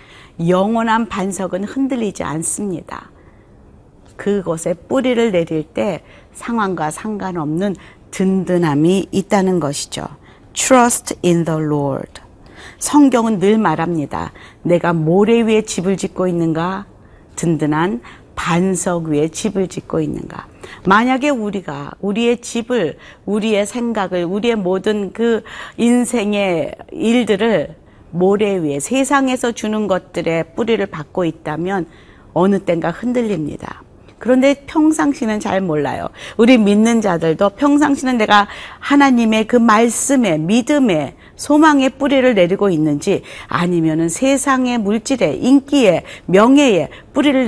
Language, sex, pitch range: Korean, female, 170-235 Hz